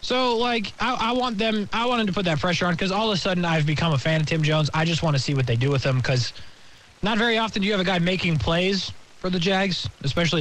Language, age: English, 20-39